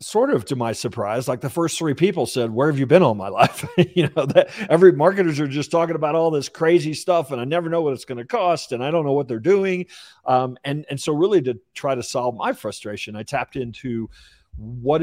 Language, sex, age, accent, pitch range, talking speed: English, male, 50-69, American, 115-140 Hz, 250 wpm